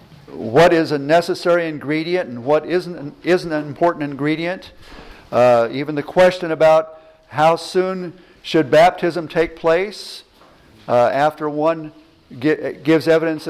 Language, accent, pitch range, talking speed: English, American, 135-165 Hz, 125 wpm